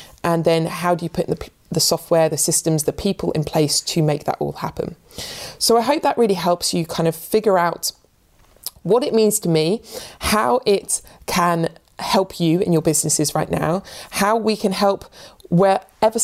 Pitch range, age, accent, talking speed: 155-195 Hz, 20-39, British, 190 wpm